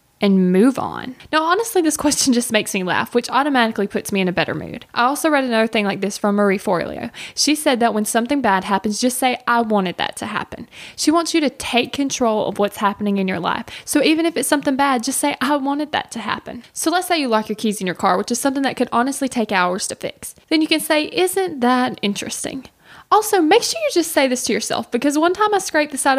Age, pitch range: 10-29, 210-290 Hz